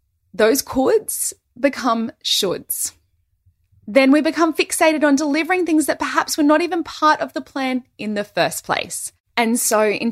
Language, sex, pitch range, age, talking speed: English, female, 180-260 Hz, 20-39, 160 wpm